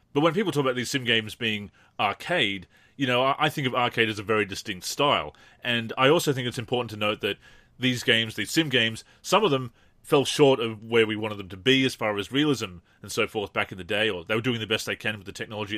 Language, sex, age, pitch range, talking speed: English, male, 30-49, 105-130 Hz, 260 wpm